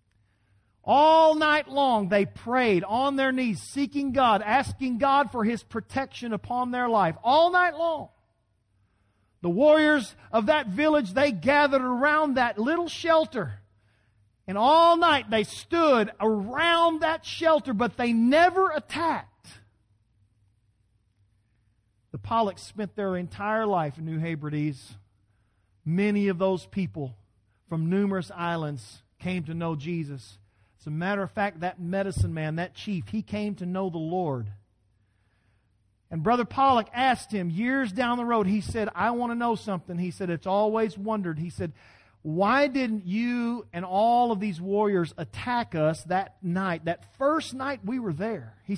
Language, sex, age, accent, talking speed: English, male, 40-59, American, 150 wpm